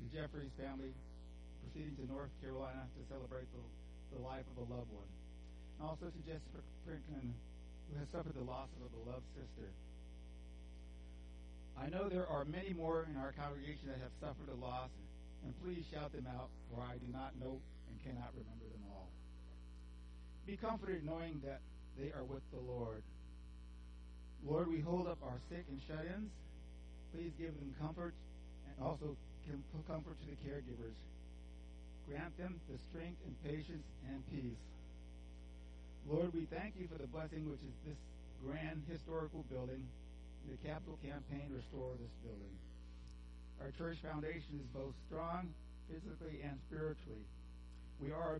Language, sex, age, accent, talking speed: English, male, 60-79, American, 155 wpm